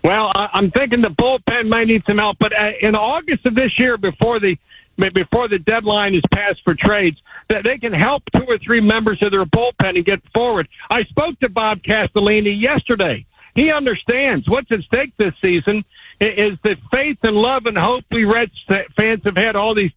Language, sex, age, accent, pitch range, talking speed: English, male, 60-79, American, 200-235 Hz, 195 wpm